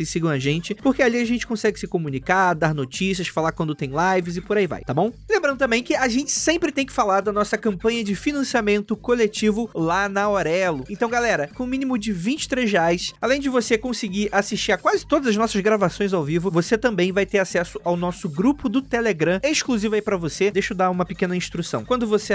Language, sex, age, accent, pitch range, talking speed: Portuguese, male, 20-39, Brazilian, 180-225 Hz, 230 wpm